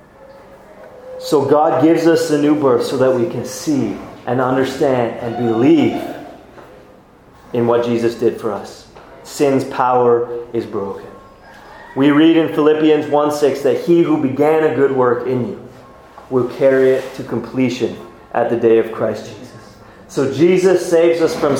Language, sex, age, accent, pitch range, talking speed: English, male, 30-49, American, 135-175 Hz, 155 wpm